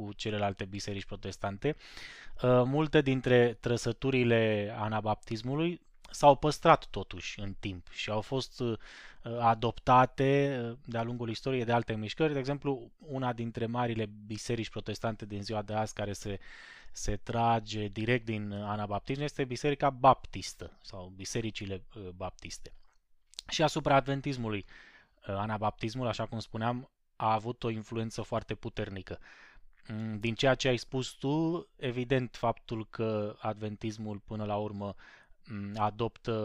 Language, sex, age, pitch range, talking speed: Romanian, male, 20-39, 100-125 Hz, 120 wpm